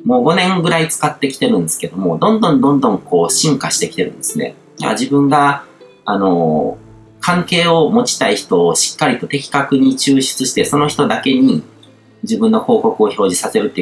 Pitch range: 140-225 Hz